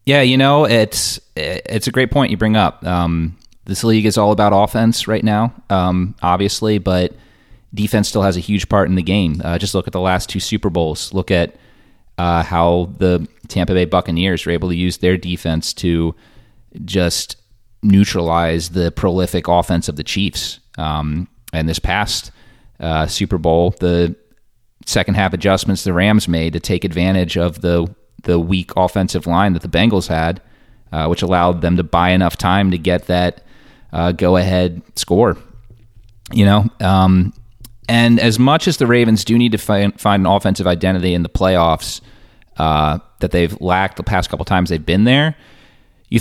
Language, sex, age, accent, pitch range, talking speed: English, male, 30-49, American, 90-110 Hz, 175 wpm